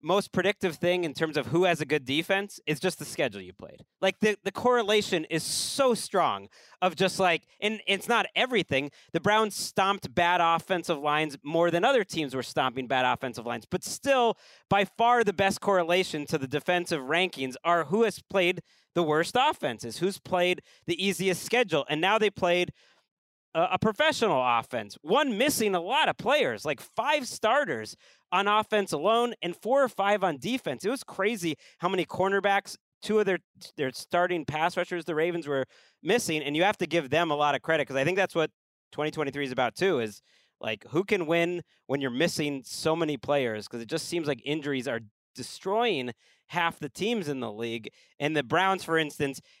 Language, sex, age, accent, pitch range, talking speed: English, male, 30-49, American, 150-200 Hz, 195 wpm